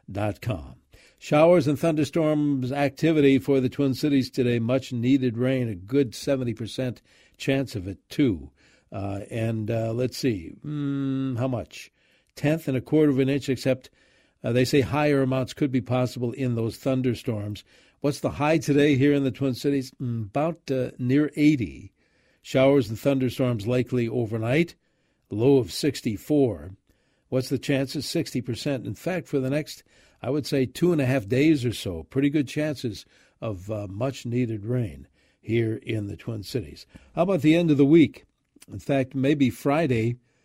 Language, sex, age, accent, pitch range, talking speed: English, male, 60-79, American, 115-140 Hz, 170 wpm